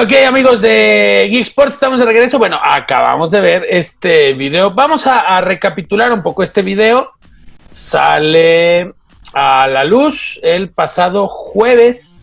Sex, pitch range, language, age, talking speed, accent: male, 160-235 Hz, Spanish, 40-59, 135 wpm, Mexican